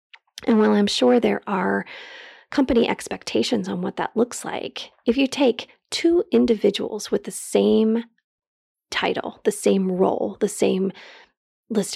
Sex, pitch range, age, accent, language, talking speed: female, 205-310 Hz, 30-49, American, English, 140 wpm